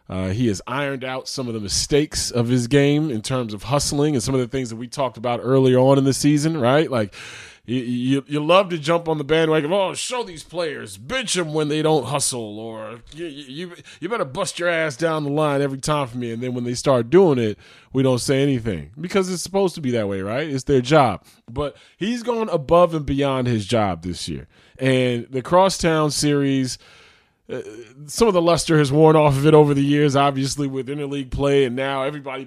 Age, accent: 30-49, American